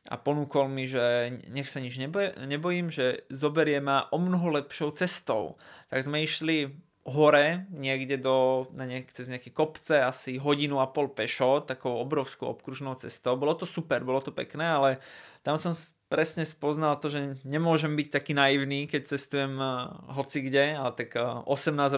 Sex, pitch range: male, 125-150 Hz